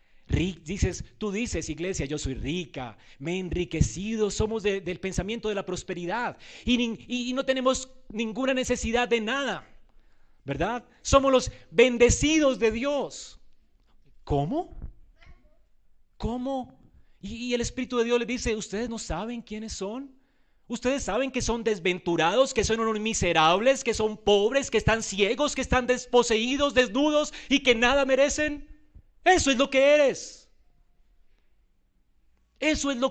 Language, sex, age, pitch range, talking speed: Spanish, male, 40-59, 215-270 Hz, 145 wpm